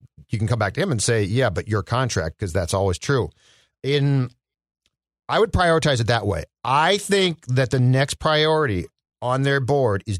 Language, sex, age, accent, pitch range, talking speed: English, male, 40-59, American, 110-135 Hz, 195 wpm